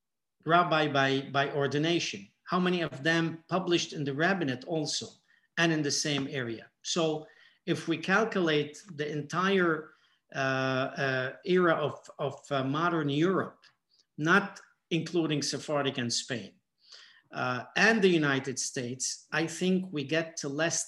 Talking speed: 140 wpm